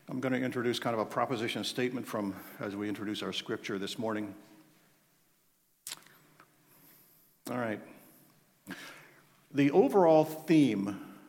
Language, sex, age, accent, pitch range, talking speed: English, male, 50-69, American, 115-155 Hz, 115 wpm